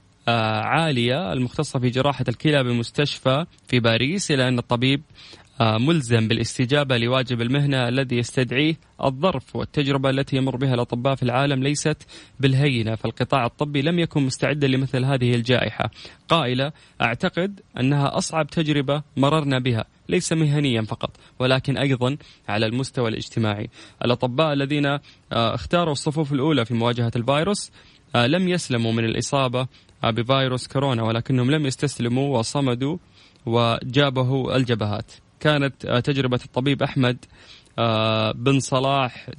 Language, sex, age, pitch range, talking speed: English, male, 20-39, 120-145 Hz, 115 wpm